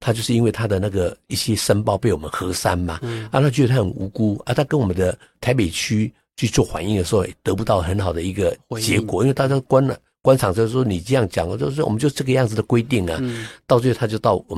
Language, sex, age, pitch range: Chinese, male, 50-69, 90-120 Hz